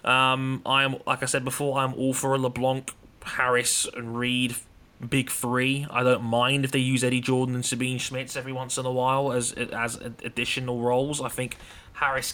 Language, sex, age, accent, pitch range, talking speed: English, male, 20-39, British, 120-130 Hz, 195 wpm